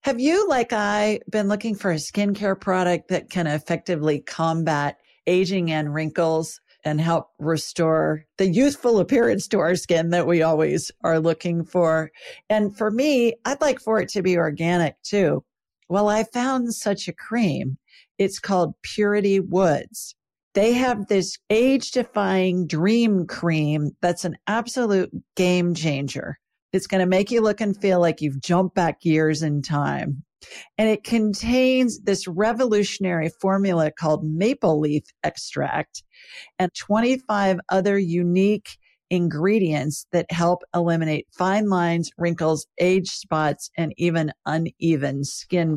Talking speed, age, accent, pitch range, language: 135 wpm, 50-69, American, 160-210 Hz, English